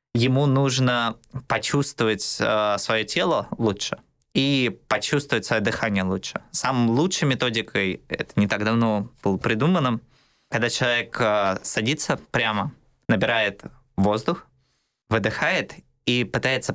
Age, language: 20-39, Russian